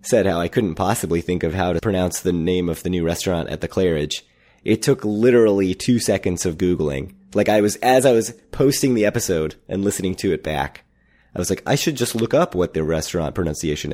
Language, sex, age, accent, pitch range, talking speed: English, male, 30-49, American, 80-110 Hz, 225 wpm